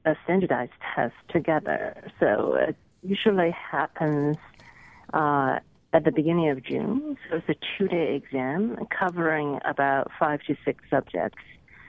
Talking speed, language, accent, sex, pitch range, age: 130 wpm, English, American, female, 150-190 Hz, 40-59